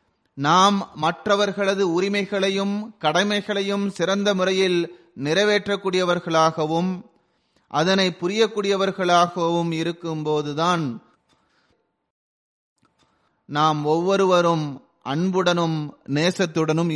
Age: 30-49